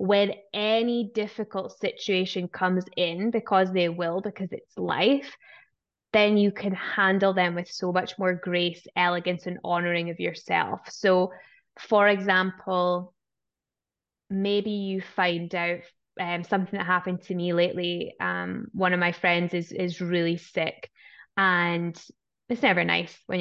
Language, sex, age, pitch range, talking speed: English, female, 10-29, 185-215 Hz, 140 wpm